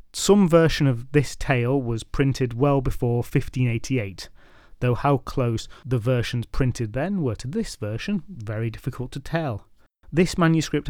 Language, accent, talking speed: English, British, 150 wpm